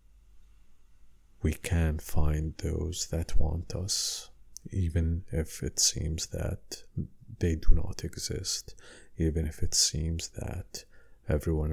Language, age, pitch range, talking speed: English, 50-69, 80-95 Hz, 115 wpm